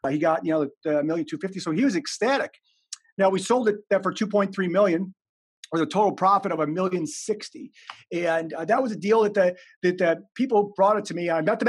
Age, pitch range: 40-59, 180-215 Hz